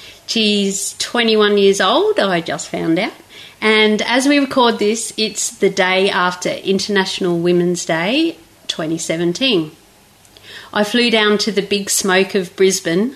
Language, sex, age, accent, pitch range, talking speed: English, female, 40-59, Australian, 175-215 Hz, 135 wpm